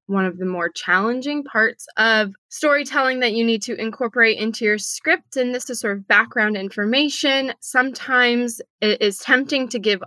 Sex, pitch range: female, 200-240 Hz